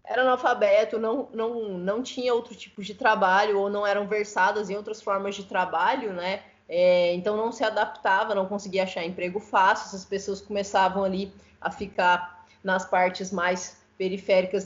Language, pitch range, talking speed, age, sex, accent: Portuguese, 185-215 Hz, 165 wpm, 20-39, female, Brazilian